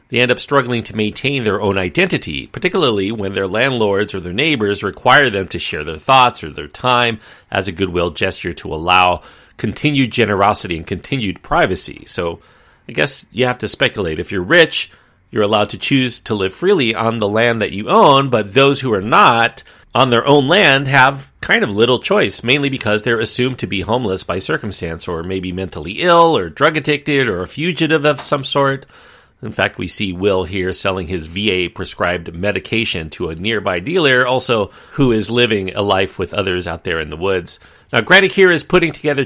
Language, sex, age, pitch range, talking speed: English, male, 40-59, 90-125 Hz, 195 wpm